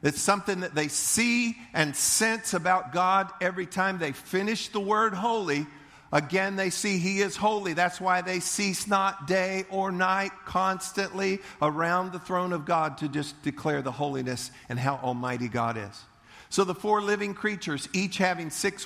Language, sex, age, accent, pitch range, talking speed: English, male, 50-69, American, 155-185 Hz, 170 wpm